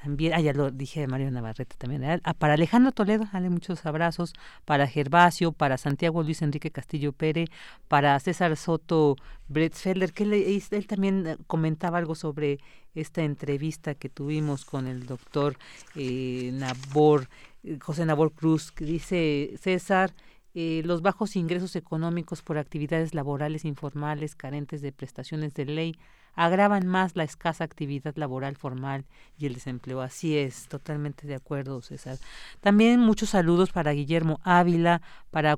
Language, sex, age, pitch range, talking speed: Spanish, female, 40-59, 145-175 Hz, 145 wpm